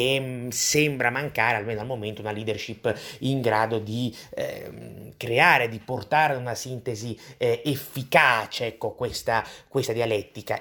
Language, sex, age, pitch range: Italian, male, 30-49, 110-140 Hz